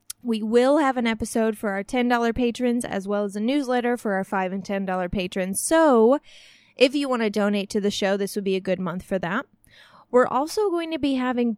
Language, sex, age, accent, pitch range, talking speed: English, female, 20-39, American, 190-245 Hz, 225 wpm